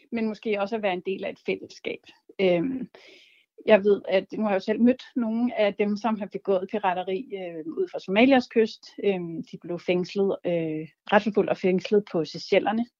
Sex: female